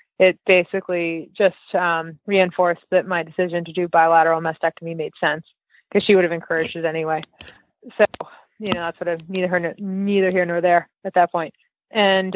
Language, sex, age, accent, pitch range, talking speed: English, female, 20-39, American, 175-200 Hz, 175 wpm